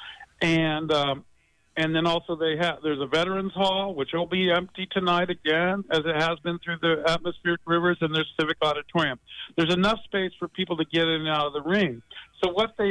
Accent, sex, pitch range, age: American, male, 160-185 Hz, 50-69